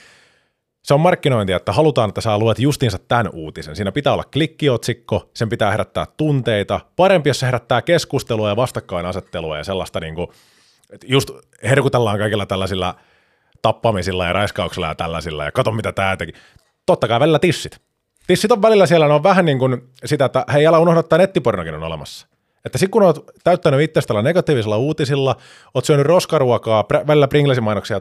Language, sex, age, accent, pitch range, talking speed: Finnish, male, 30-49, native, 95-155 Hz, 165 wpm